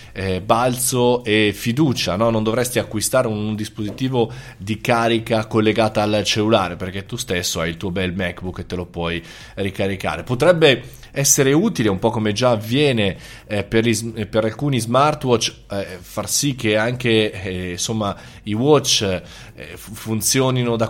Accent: native